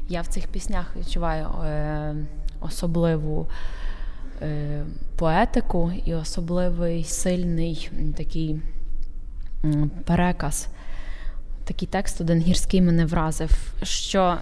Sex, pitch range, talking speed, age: female, 155-180 Hz, 90 wpm, 20-39